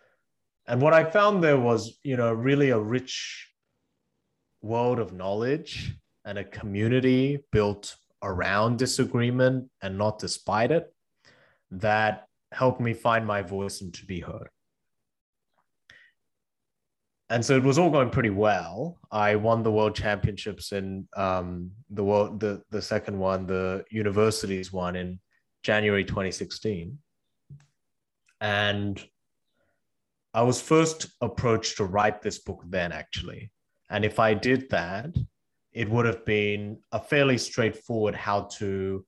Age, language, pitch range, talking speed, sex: 20-39, English, 95-120 Hz, 130 wpm, male